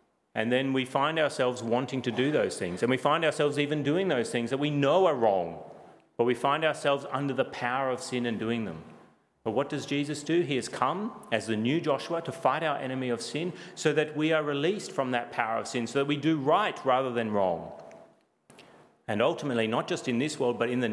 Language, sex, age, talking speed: English, male, 40-59, 230 wpm